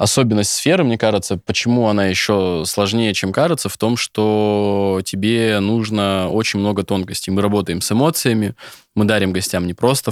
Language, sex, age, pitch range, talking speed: Russian, male, 20-39, 95-110 Hz, 160 wpm